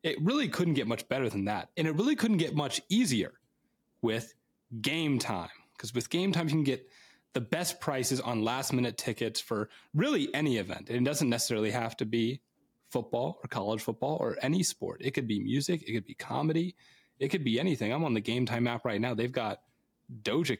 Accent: American